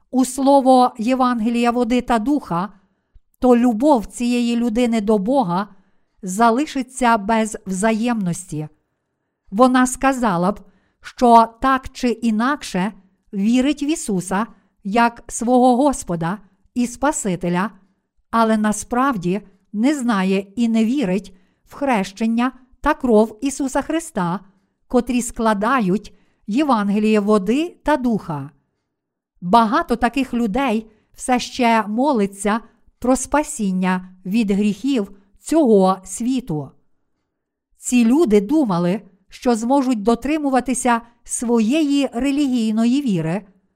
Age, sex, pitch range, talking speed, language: 50-69, female, 205-255 Hz, 95 wpm, Ukrainian